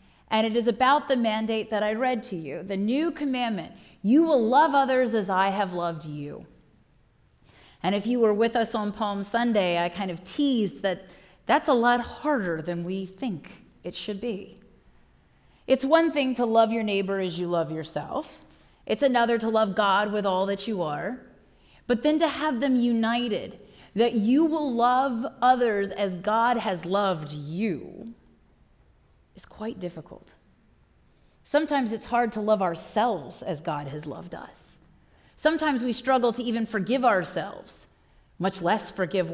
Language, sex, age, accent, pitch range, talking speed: English, female, 30-49, American, 185-240 Hz, 165 wpm